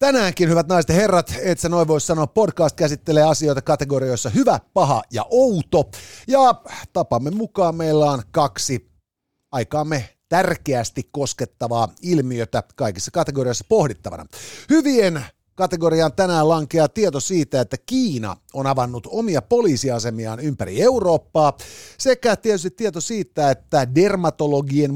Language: Finnish